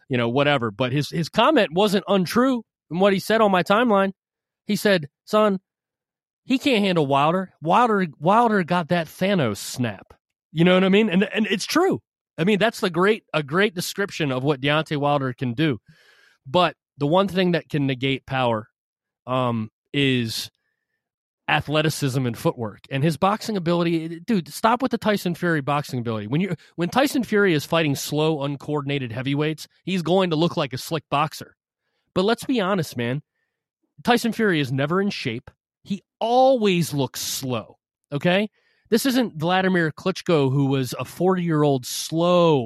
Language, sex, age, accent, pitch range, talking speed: English, male, 30-49, American, 140-200 Hz, 170 wpm